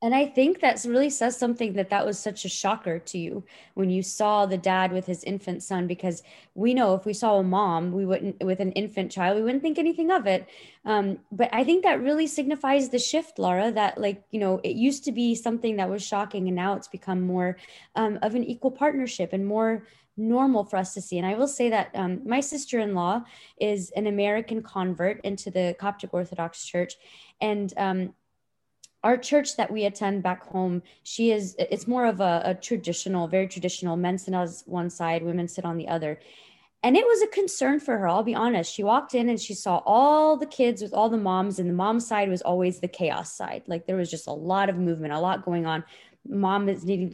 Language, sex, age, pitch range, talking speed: English, female, 20-39, 180-235 Hz, 225 wpm